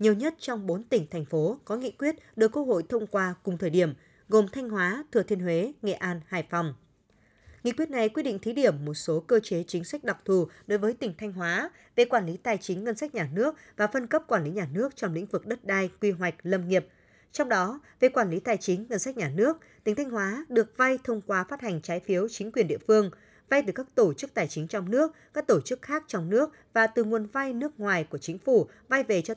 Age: 20-39